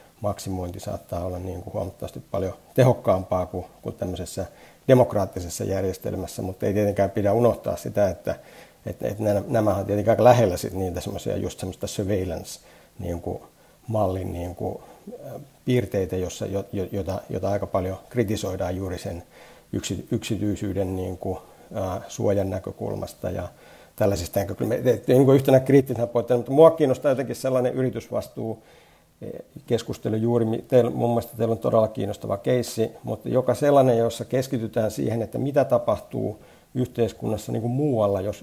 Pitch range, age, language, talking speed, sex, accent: 95-115 Hz, 60-79, Finnish, 120 wpm, male, native